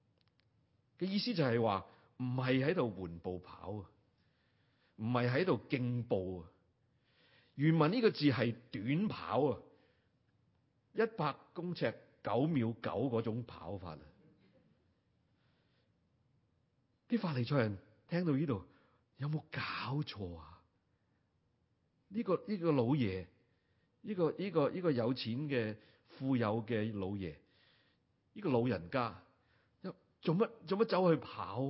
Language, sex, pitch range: Chinese, male, 100-145 Hz